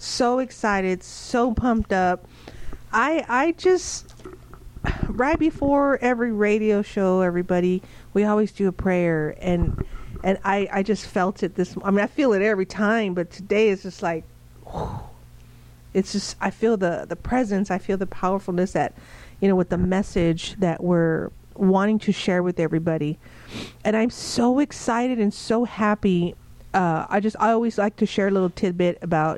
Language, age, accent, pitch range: English, 40-59, American, 170-205 Hz